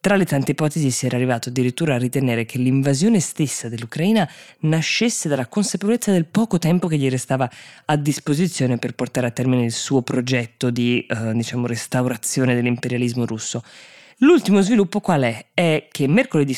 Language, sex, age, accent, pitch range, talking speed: Italian, female, 20-39, native, 120-150 Hz, 165 wpm